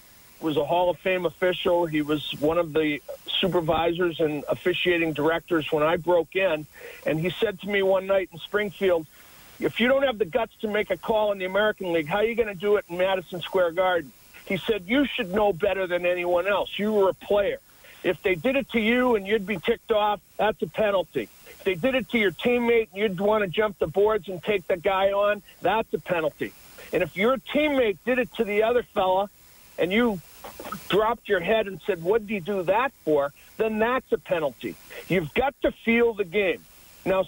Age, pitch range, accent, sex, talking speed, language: 50-69, 180-225 Hz, American, male, 220 wpm, English